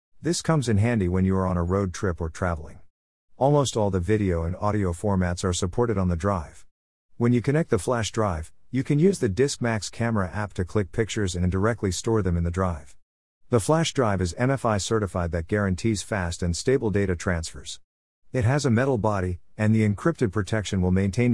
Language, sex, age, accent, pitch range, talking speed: English, male, 50-69, American, 90-115 Hz, 200 wpm